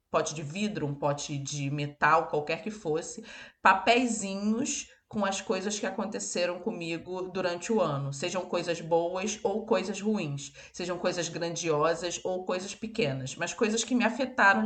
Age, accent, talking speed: 20-39, Brazilian, 155 wpm